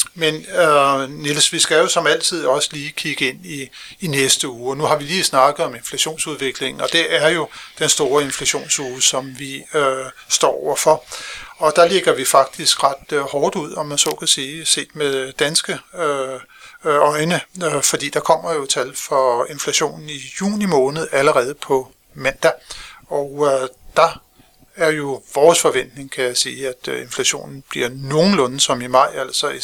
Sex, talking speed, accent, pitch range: male, 180 wpm, native, 130-155 Hz